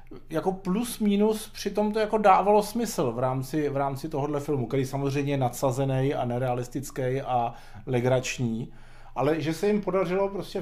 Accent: native